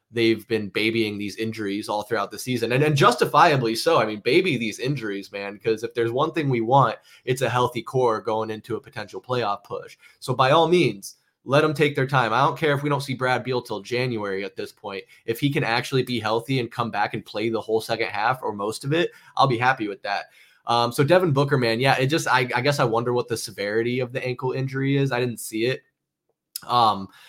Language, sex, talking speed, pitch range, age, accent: English, male, 240 wpm, 105-130 Hz, 20-39, American